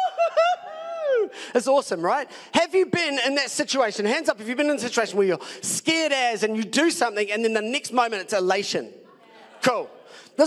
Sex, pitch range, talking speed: male, 195-285 Hz, 195 wpm